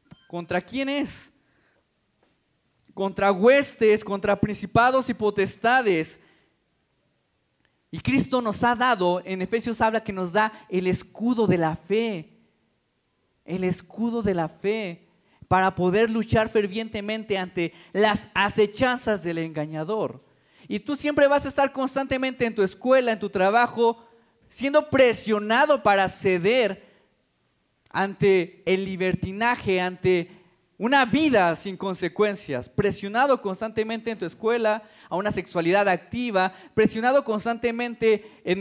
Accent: Mexican